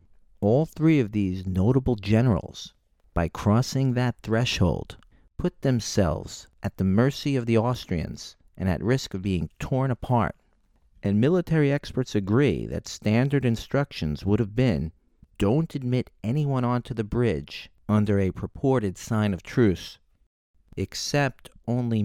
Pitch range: 95-130 Hz